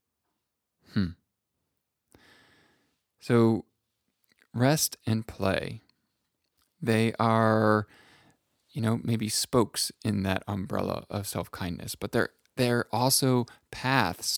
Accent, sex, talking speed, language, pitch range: American, male, 90 wpm, English, 100-115 Hz